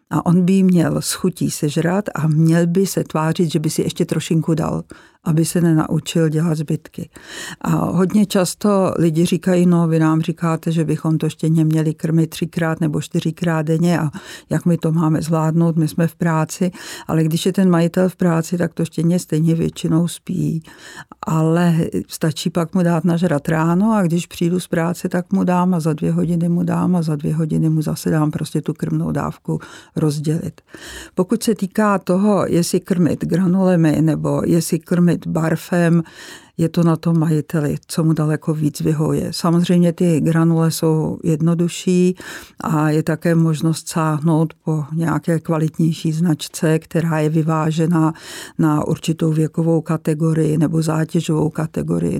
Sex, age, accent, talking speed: female, 50-69, native, 165 wpm